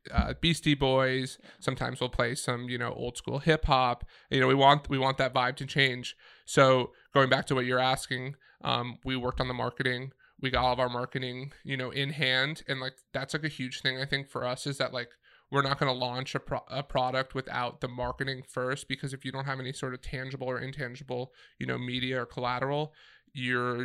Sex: male